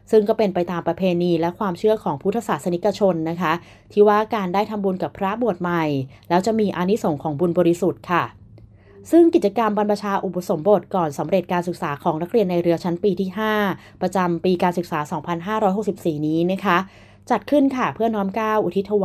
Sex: female